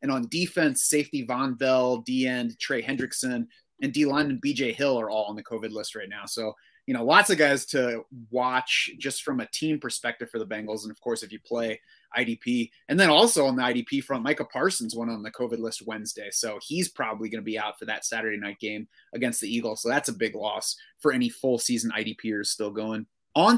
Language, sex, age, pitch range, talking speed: English, male, 30-49, 120-155 Hz, 225 wpm